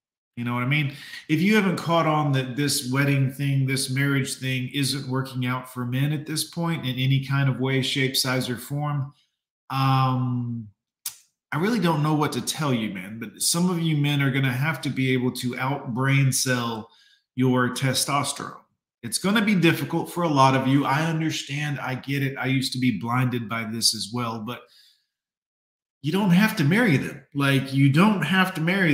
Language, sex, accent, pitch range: English, male, American, 130-165 Hz